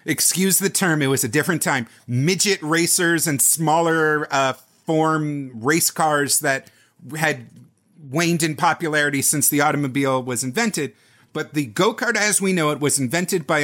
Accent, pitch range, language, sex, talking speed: American, 140-190 Hz, English, male, 160 wpm